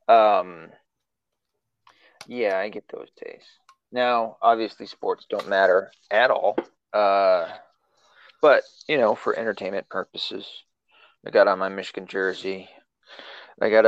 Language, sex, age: English, male, 20-39